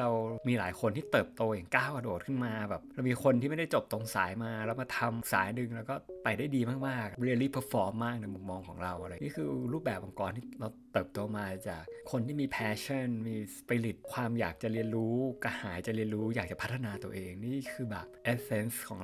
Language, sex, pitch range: Thai, male, 110-135 Hz